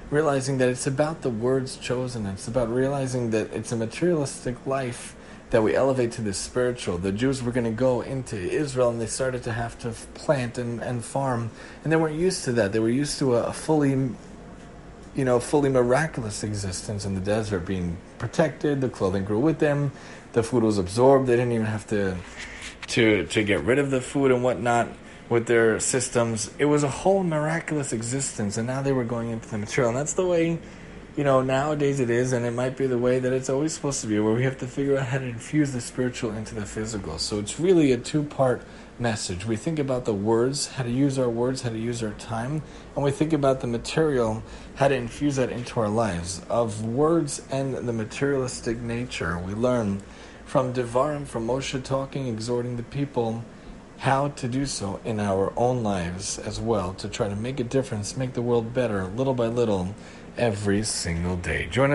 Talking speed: 205 wpm